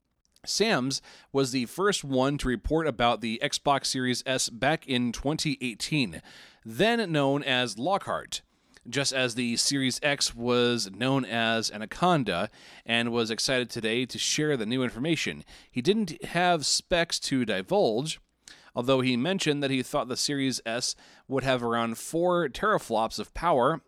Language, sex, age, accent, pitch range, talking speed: English, male, 30-49, American, 120-150 Hz, 150 wpm